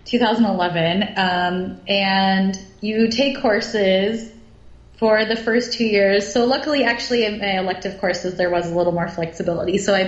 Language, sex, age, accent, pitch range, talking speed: English, female, 20-39, American, 185-220 Hz, 155 wpm